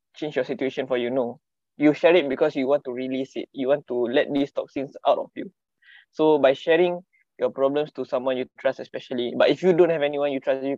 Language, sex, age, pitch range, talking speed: English, male, 20-39, 130-150 Hz, 240 wpm